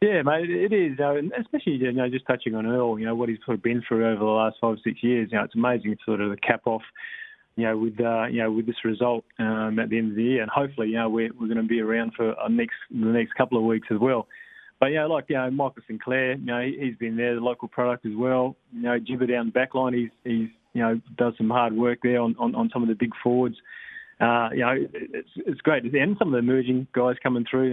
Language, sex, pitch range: English, male, 115-130 Hz